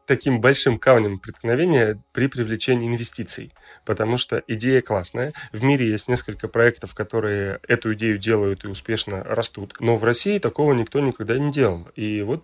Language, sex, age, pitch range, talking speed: Russian, male, 20-39, 105-130 Hz, 160 wpm